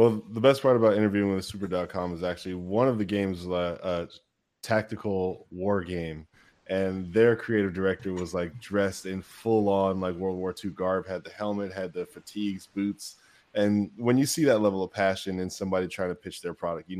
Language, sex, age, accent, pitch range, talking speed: English, male, 10-29, American, 95-110 Hz, 200 wpm